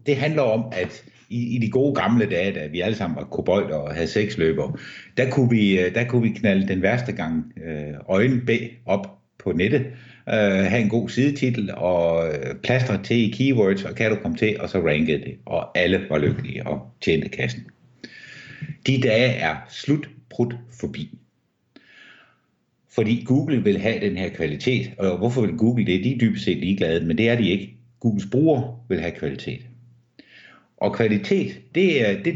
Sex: male